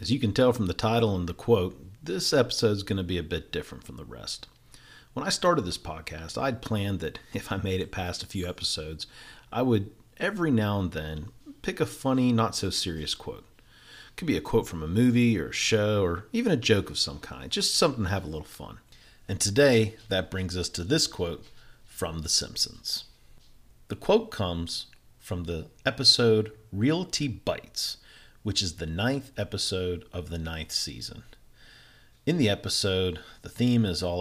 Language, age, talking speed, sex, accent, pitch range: English, 40-59, 195 wpm, male, American, 90-120 Hz